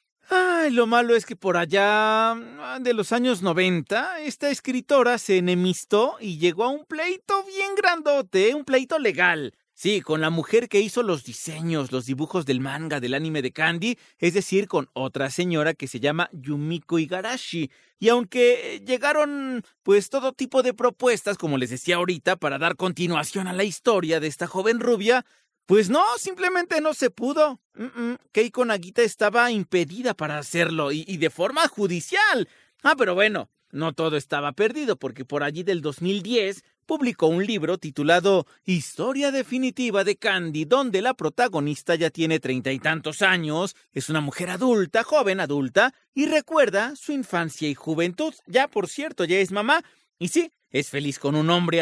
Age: 40-59